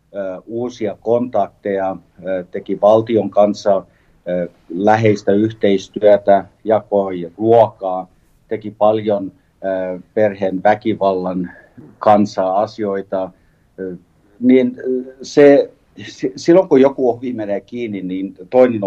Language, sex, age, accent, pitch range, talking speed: Finnish, male, 50-69, native, 95-110 Hz, 75 wpm